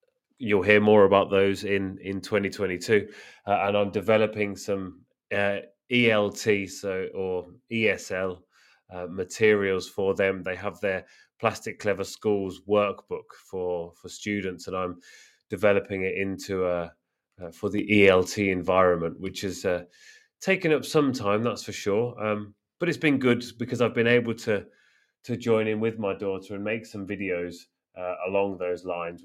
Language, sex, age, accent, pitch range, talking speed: English, male, 30-49, British, 95-115 Hz, 160 wpm